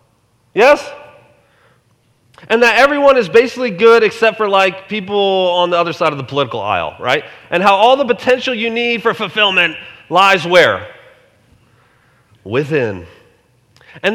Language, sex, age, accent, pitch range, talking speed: English, male, 30-49, American, 160-240 Hz, 140 wpm